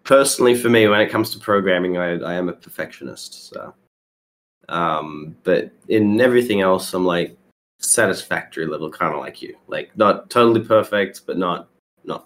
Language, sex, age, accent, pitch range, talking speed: English, male, 20-39, Australian, 95-115 Hz, 165 wpm